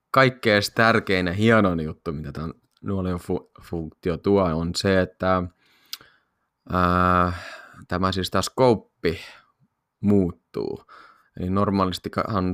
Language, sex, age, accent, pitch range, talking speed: Finnish, male, 20-39, native, 90-110 Hz, 90 wpm